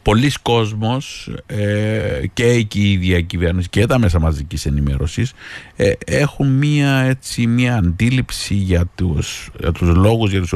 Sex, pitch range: male, 90-120 Hz